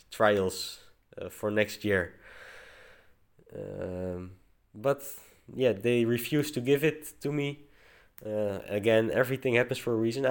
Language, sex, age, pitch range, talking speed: English, male, 20-39, 110-135 Hz, 130 wpm